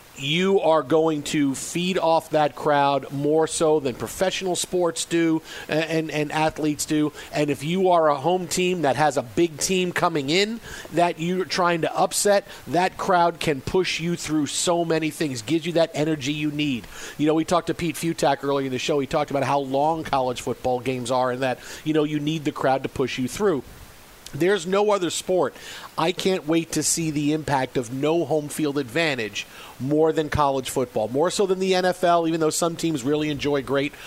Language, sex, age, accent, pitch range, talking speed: English, male, 40-59, American, 140-170 Hz, 205 wpm